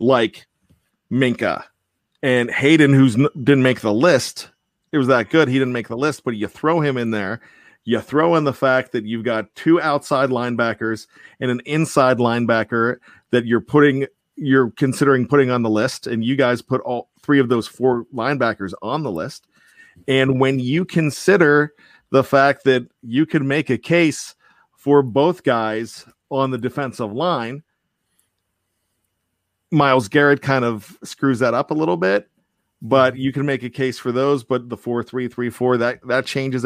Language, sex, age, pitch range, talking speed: English, male, 40-59, 115-140 Hz, 175 wpm